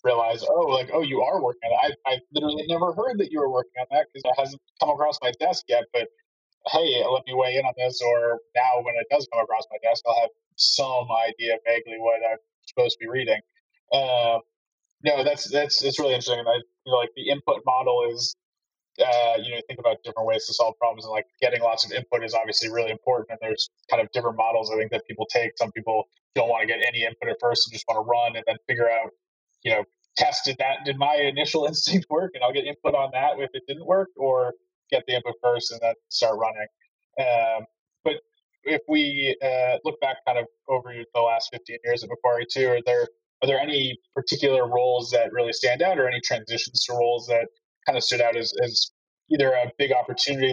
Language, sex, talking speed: English, male, 230 wpm